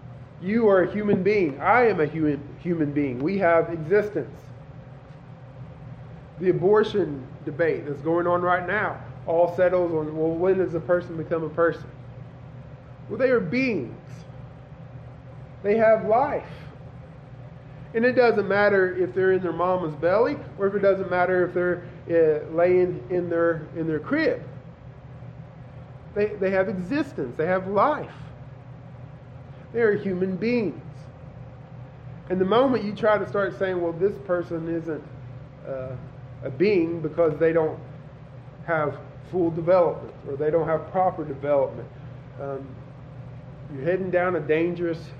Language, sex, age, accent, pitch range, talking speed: English, male, 20-39, American, 135-180 Hz, 140 wpm